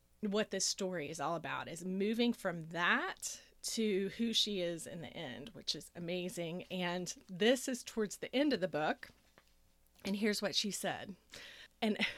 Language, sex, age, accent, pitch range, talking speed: English, female, 30-49, American, 180-230 Hz, 170 wpm